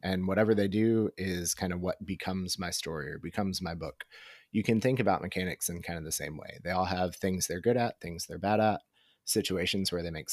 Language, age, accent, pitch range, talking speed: English, 30-49, American, 90-105 Hz, 240 wpm